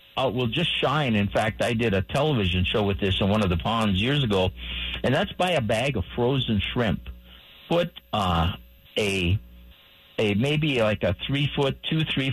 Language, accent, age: English, American, 50-69